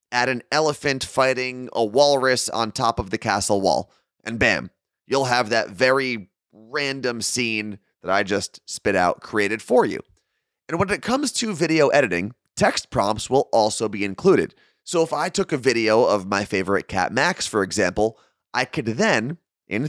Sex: male